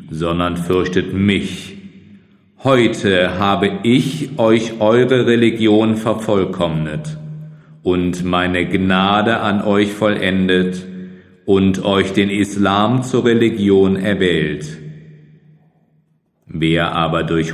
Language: German